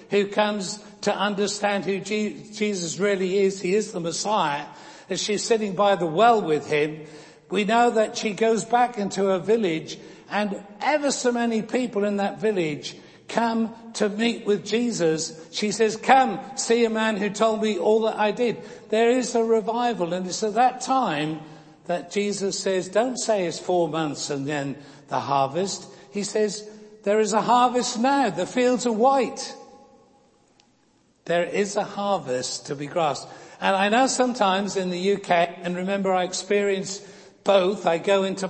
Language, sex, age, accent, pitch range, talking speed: English, male, 60-79, British, 185-225 Hz, 170 wpm